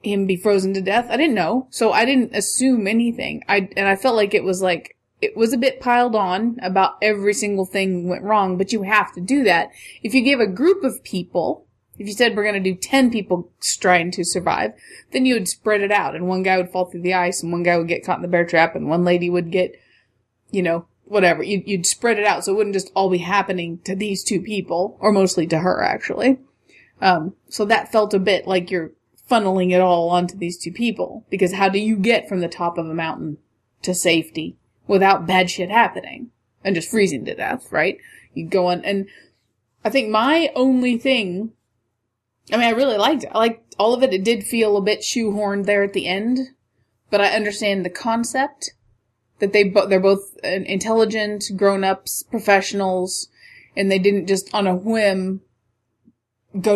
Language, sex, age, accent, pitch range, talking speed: English, female, 20-39, American, 180-220 Hz, 210 wpm